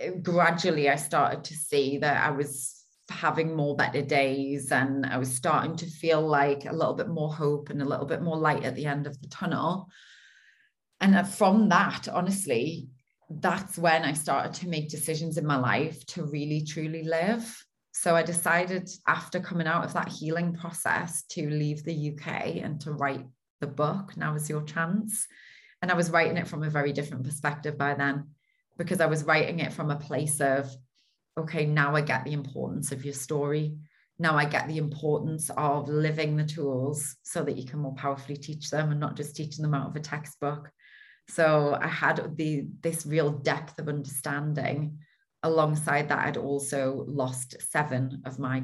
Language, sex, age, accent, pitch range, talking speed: English, female, 30-49, British, 145-165 Hz, 185 wpm